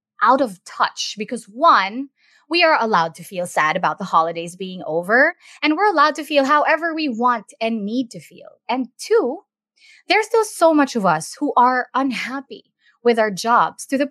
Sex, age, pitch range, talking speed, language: female, 20-39, 195-270 Hz, 185 wpm, English